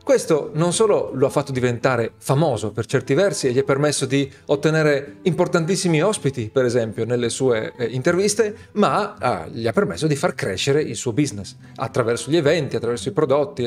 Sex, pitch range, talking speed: male, 125-170 Hz, 175 wpm